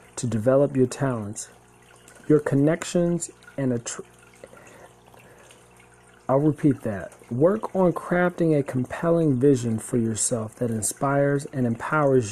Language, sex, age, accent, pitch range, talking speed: English, male, 40-59, American, 110-145 Hz, 115 wpm